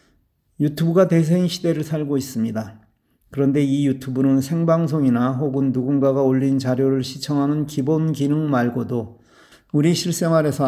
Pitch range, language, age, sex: 125-155 Hz, Korean, 40-59, male